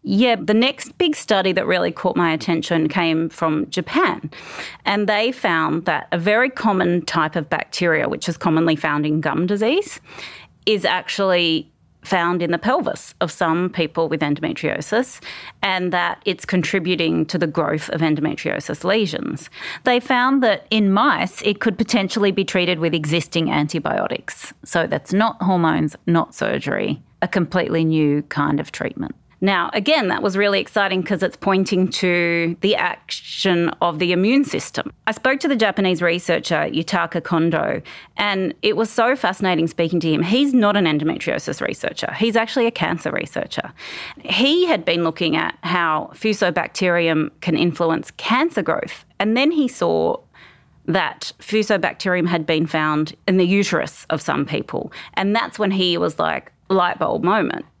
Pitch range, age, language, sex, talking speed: 165-215 Hz, 30-49, English, female, 160 wpm